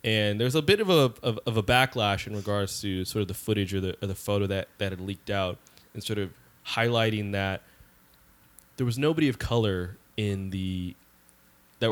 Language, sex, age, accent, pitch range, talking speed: English, male, 20-39, American, 95-115 Hz, 200 wpm